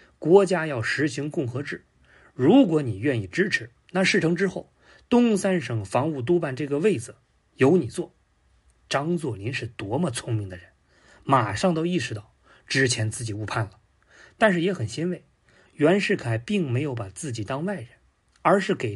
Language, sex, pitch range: Chinese, male, 115-180 Hz